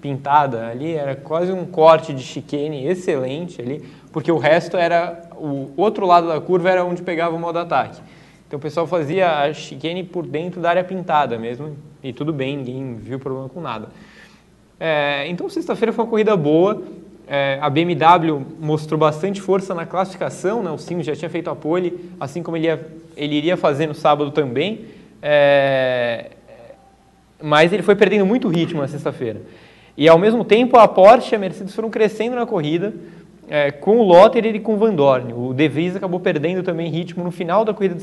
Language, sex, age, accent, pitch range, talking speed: Portuguese, male, 20-39, Brazilian, 150-190 Hz, 190 wpm